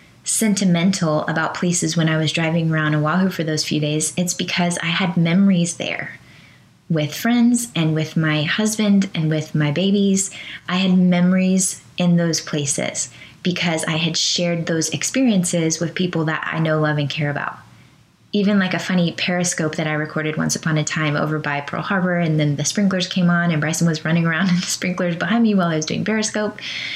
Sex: female